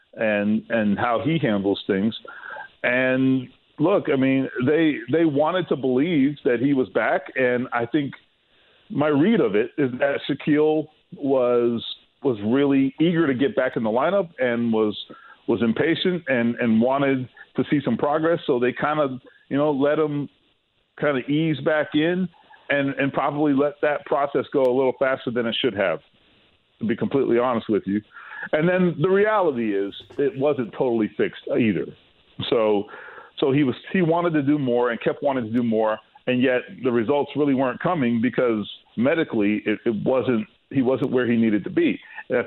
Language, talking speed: English, 180 wpm